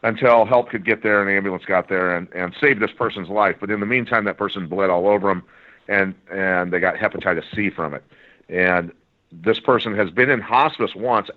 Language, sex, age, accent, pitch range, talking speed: English, male, 50-69, American, 95-120 Hz, 220 wpm